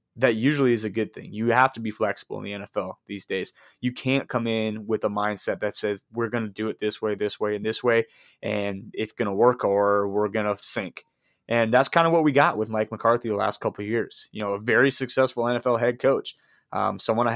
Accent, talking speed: American, 250 wpm